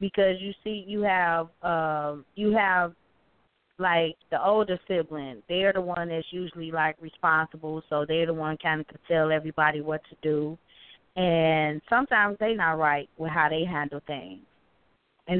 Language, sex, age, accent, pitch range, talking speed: English, female, 20-39, American, 160-195 Hz, 165 wpm